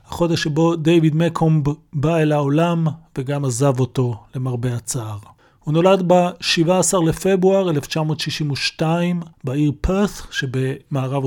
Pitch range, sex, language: 135-165 Hz, male, Hebrew